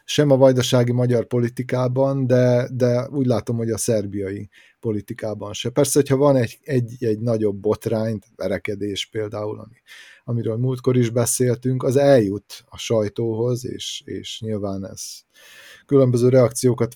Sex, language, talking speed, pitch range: male, Hungarian, 140 wpm, 110-130 Hz